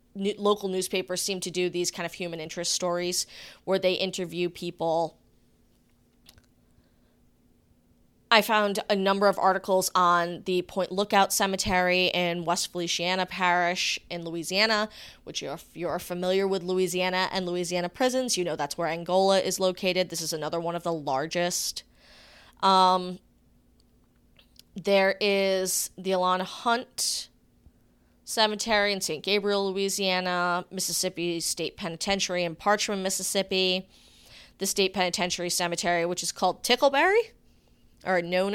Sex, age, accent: female, 20-39, American